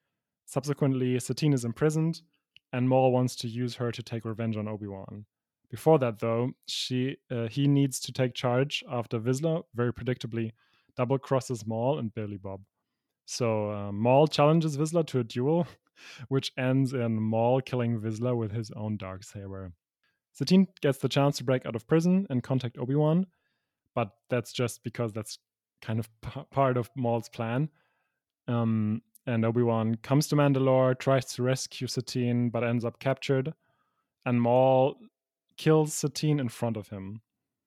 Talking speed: 160 wpm